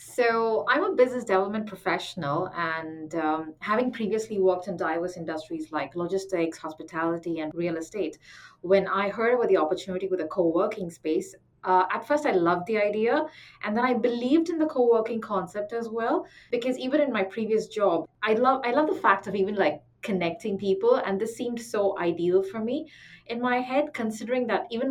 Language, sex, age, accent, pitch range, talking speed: English, female, 30-49, Indian, 185-250 Hz, 185 wpm